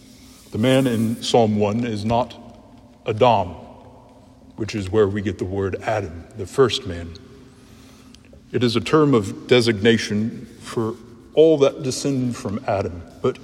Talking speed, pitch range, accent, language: 145 wpm, 110-125 Hz, American, English